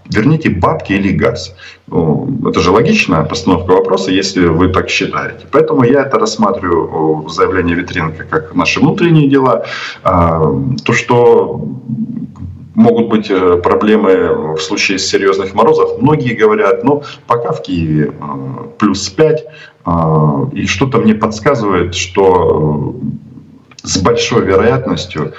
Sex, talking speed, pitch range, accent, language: male, 115 wpm, 80-125 Hz, native, Russian